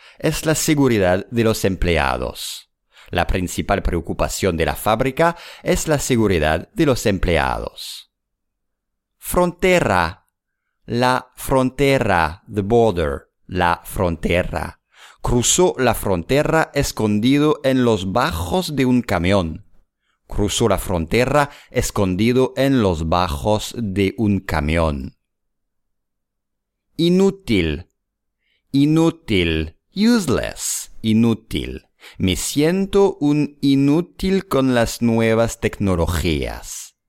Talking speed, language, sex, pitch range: 90 wpm, English, male, 90-145 Hz